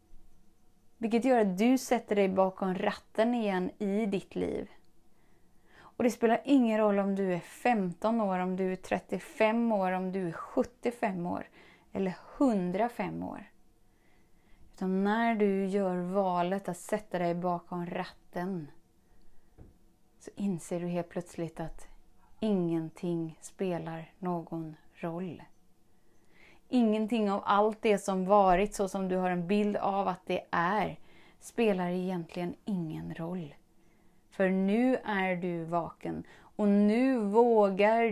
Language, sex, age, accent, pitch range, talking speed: Swedish, female, 20-39, native, 180-220 Hz, 130 wpm